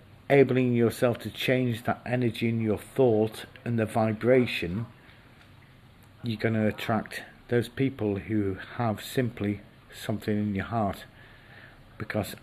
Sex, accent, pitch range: male, British, 105-125 Hz